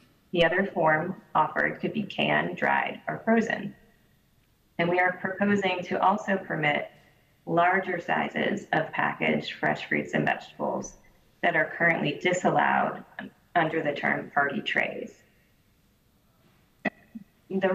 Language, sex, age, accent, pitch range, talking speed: English, female, 30-49, American, 155-190 Hz, 120 wpm